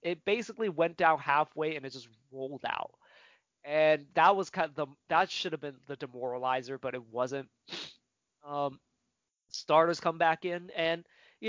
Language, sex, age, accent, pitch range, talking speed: English, male, 20-39, American, 130-160 Hz, 165 wpm